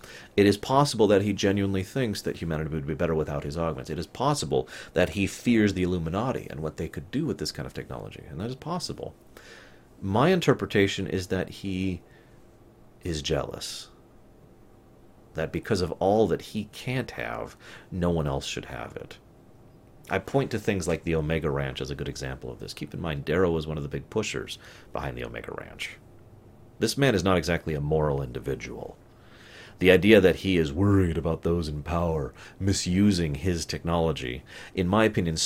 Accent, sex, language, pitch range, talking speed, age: American, male, English, 80-105 Hz, 185 wpm, 30-49